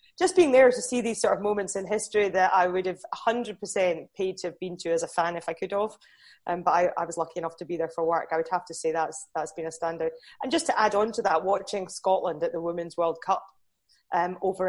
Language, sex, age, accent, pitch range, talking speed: English, female, 20-39, British, 180-205 Hz, 270 wpm